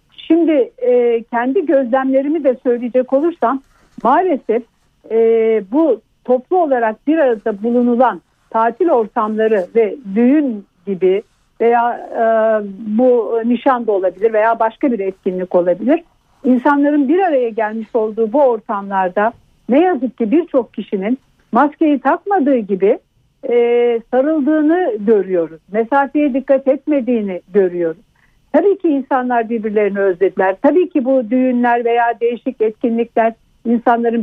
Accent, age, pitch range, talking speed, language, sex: native, 60-79, 225-285 Hz, 115 wpm, Turkish, female